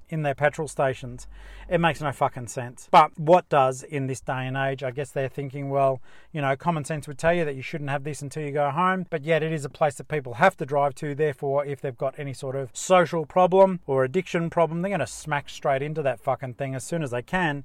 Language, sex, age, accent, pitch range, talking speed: English, male, 40-59, Australian, 140-180 Hz, 255 wpm